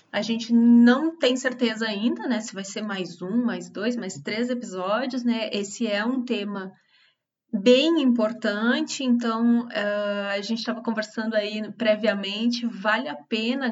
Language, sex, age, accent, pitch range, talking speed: Portuguese, female, 20-39, Brazilian, 195-235 Hz, 150 wpm